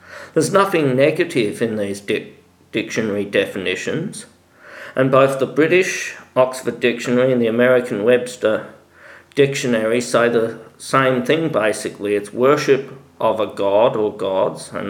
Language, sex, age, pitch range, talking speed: English, male, 50-69, 100-140 Hz, 125 wpm